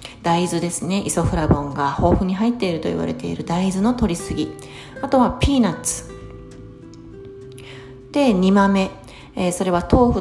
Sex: female